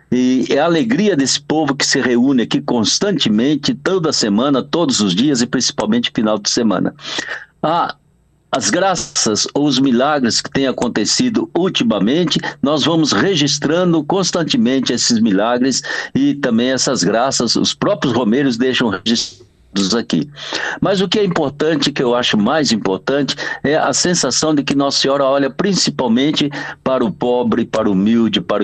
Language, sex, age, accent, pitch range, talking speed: Portuguese, male, 60-79, Brazilian, 115-180 Hz, 155 wpm